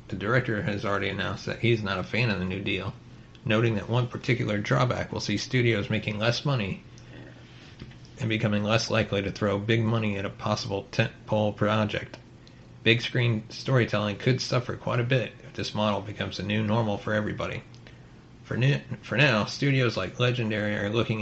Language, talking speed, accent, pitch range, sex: English, 180 wpm, American, 105-125 Hz, male